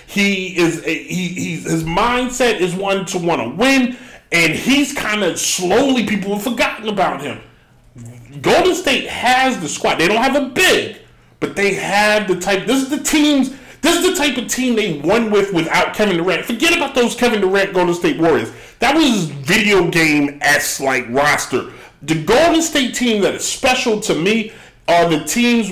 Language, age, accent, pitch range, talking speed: English, 30-49, American, 145-230 Hz, 190 wpm